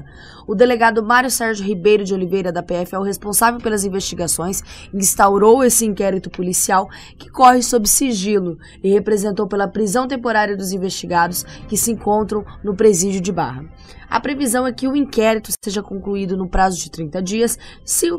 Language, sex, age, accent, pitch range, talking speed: Portuguese, female, 10-29, Brazilian, 190-225 Hz, 165 wpm